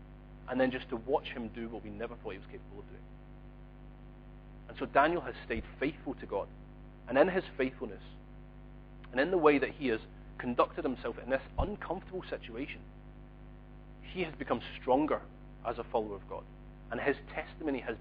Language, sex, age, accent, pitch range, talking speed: English, male, 40-59, British, 80-135 Hz, 180 wpm